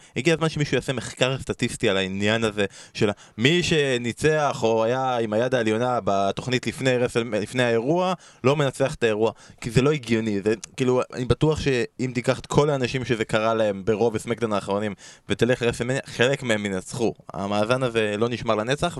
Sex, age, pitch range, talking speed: male, 20-39, 105-135 Hz, 175 wpm